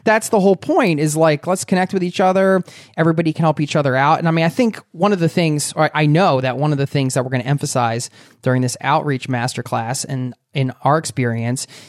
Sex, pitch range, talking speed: male, 130-165 Hz, 230 wpm